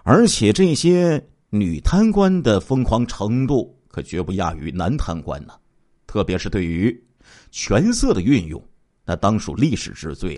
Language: Chinese